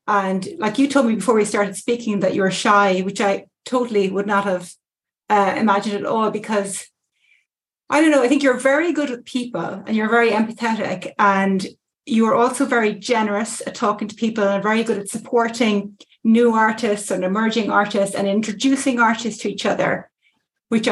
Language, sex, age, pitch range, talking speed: English, female, 30-49, 205-245 Hz, 185 wpm